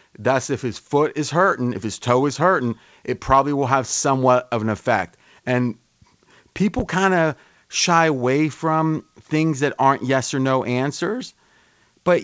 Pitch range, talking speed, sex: 125-160 Hz, 165 wpm, male